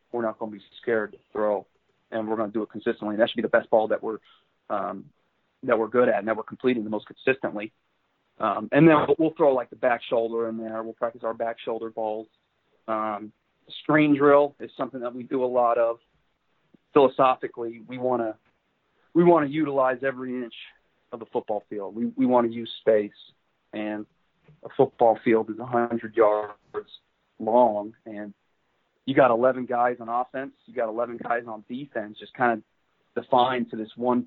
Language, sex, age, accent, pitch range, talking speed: English, male, 30-49, American, 110-130 Hz, 200 wpm